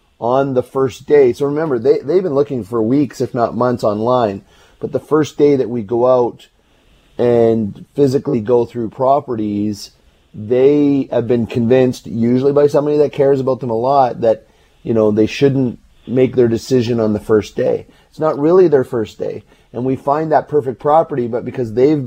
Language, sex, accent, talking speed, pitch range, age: English, male, American, 190 wpm, 115-140 Hz, 30-49